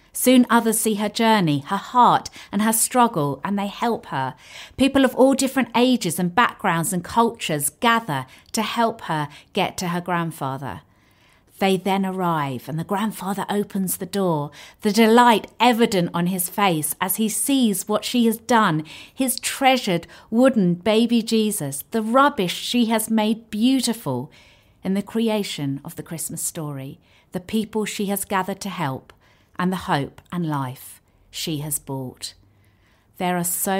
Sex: female